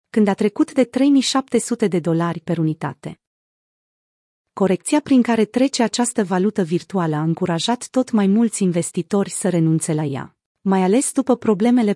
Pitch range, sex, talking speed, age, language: 180-235 Hz, female, 150 wpm, 30-49, Romanian